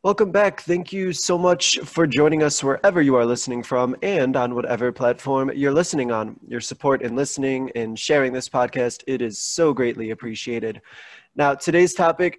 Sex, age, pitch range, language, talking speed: male, 20-39, 125-155 Hz, English, 180 wpm